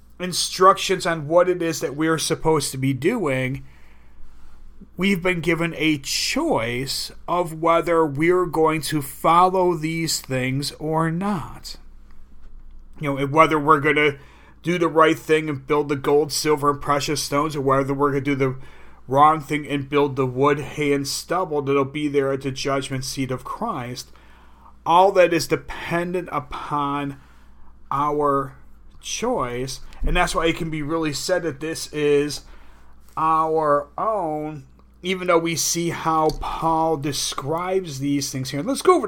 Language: English